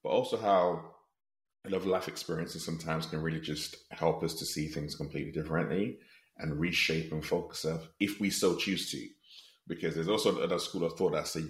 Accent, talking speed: British, 195 wpm